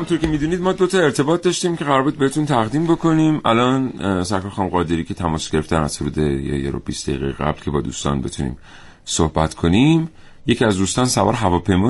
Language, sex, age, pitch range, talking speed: Persian, male, 40-59, 90-130 Hz, 180 wpm